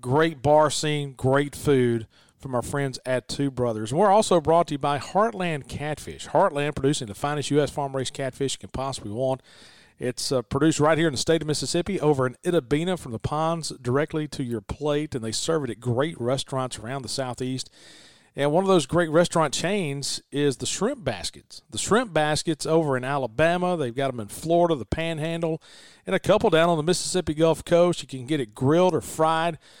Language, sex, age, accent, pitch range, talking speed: English, male, 40-59, American, 130-165 Hz, 205 wpm